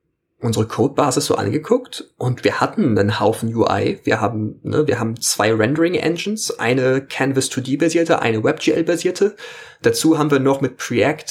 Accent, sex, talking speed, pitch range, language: German, male, 155 wpm, 110-155 Hz, German